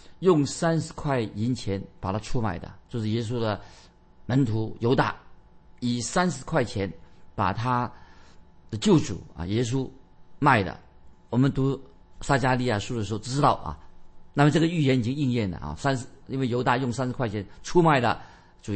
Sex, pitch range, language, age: male, 110-150 Hz, Chinese, 50-69